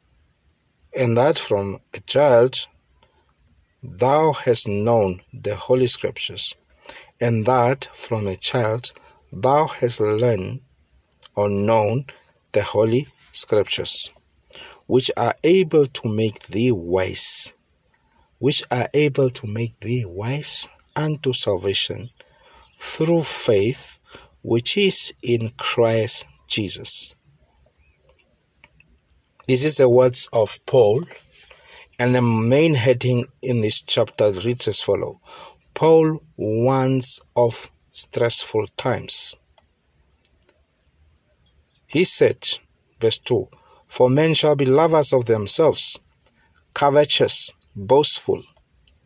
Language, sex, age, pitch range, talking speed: English, male, 60-79, 100-135 Hz, 100 wpm